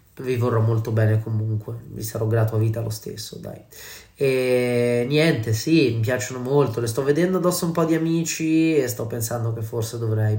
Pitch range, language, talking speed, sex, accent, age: 115-140 Hz, Italian, 190 wpm, male, native, 20-39